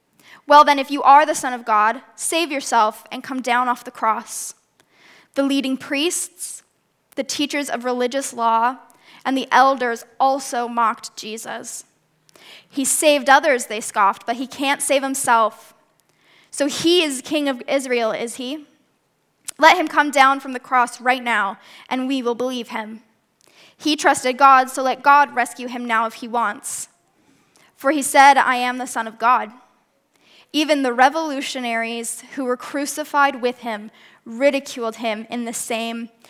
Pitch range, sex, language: 240-290 Hz, female, English